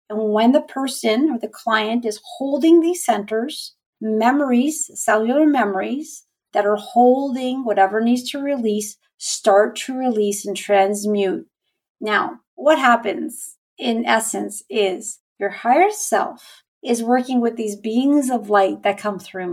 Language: English